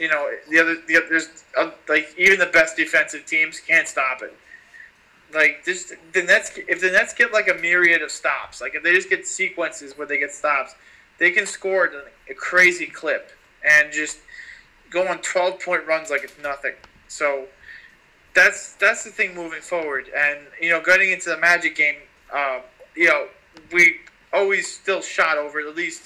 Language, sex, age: English, male, 20-39